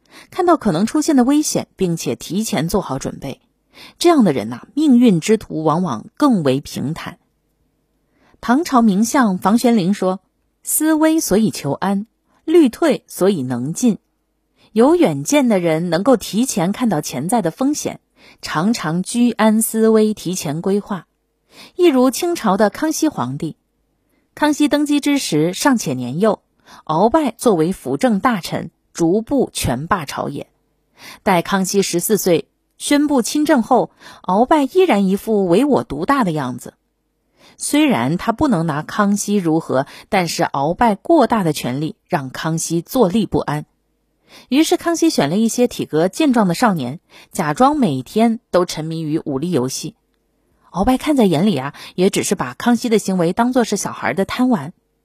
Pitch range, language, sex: 170-255 Hz, Chinese, female